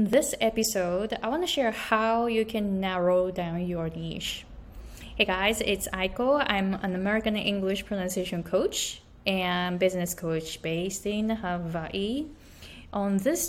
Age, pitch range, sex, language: 20-39, 180-215 Hz, female, Japanese